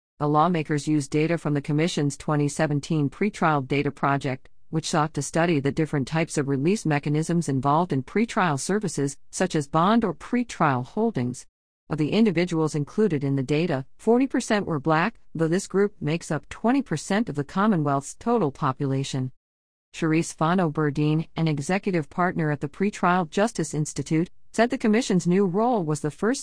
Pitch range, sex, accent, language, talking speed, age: 145-190 Hz, female, American, English, 160 wpm, 50-69